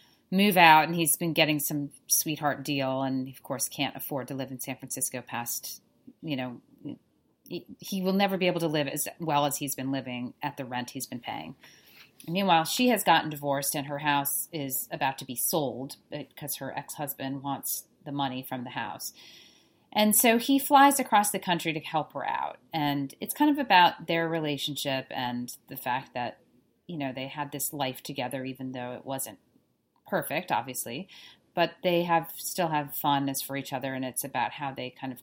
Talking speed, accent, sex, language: 195 wpm, American, female, English